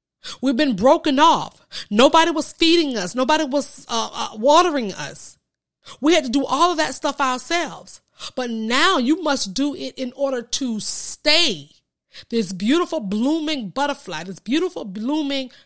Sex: female